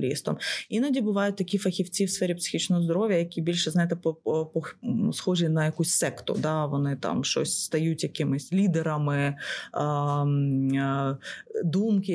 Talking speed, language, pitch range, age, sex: 125 wpm, Ukrainian, 155-190 Hz, 20-39, female